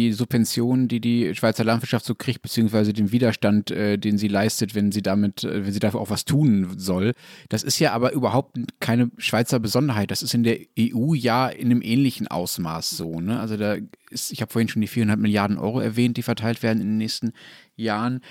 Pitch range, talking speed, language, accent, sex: 105-125 Hz, 210 wpm, German, German, male